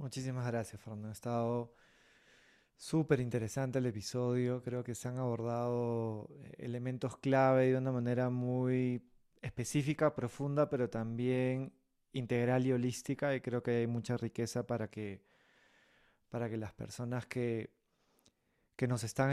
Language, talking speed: Spanish, 130 wpm